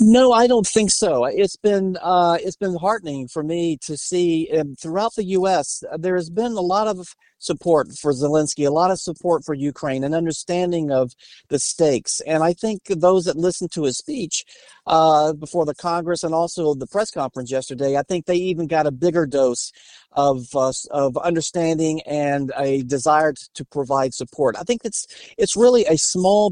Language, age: English, 50-69